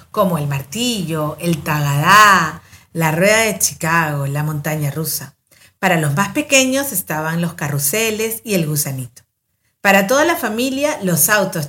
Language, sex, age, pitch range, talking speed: Spanish, female, 50-69, 150-230 Hz, 145 wpm